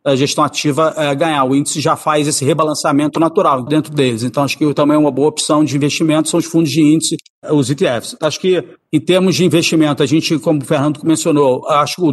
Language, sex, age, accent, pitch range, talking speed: Portuguese, male, 50-69, Brazilian, 145-160 Hz, 225 wpm